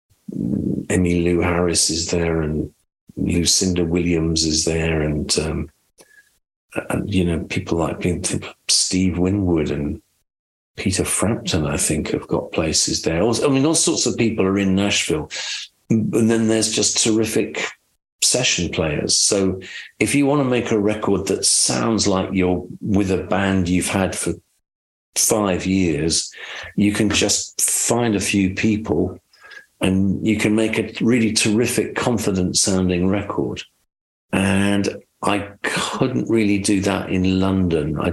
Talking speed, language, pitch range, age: 140 wpm, English, 85-105 Hz, 50-69